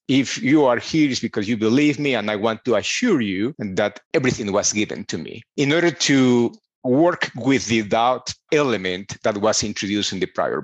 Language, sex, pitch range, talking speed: English, male, 115-150 Hz, 195 wpm